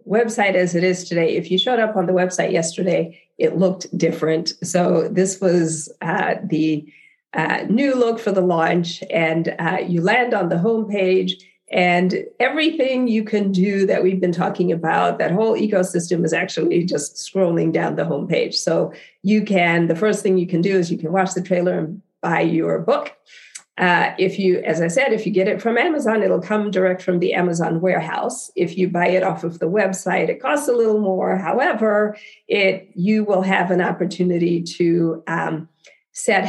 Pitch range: 170-205 Hz